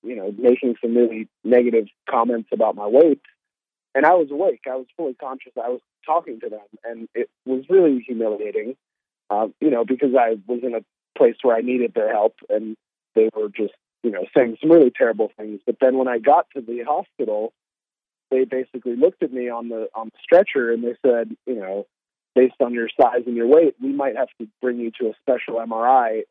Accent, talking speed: American, 210 wpm